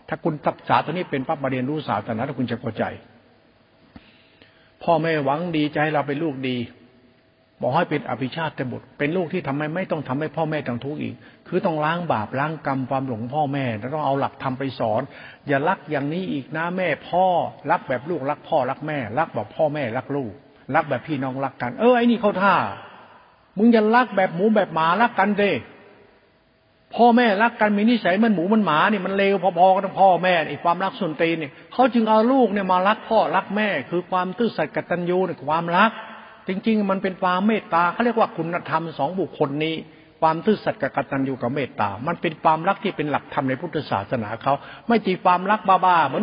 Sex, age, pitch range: male, 60-79, 140-190 Hz